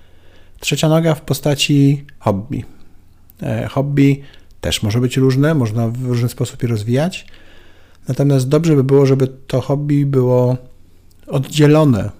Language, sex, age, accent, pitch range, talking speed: Polish, male, 50-69, native, 100-140 Hz, 125 wpm